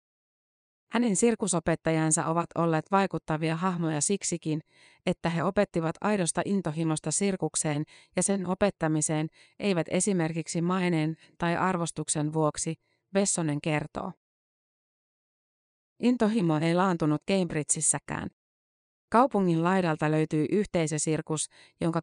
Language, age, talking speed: Finnish, 30-49, 90 wpm